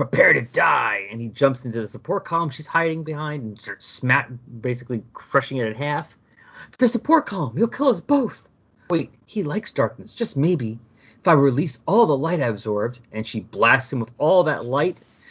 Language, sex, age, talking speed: English, male, 30-49, 195 wpm